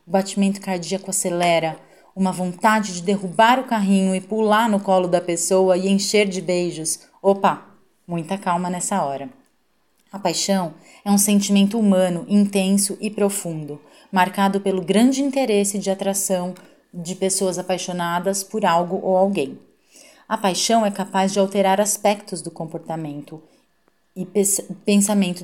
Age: 30-49